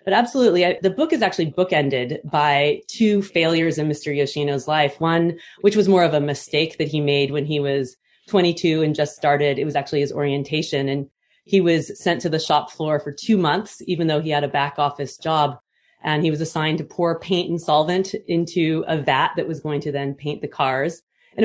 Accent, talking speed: American, 215 wpm